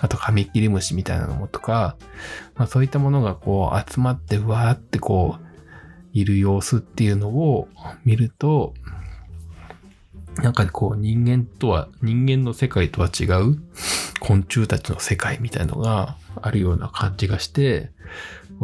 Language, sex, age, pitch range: Japanese, male, 20-39, 90-120 Hz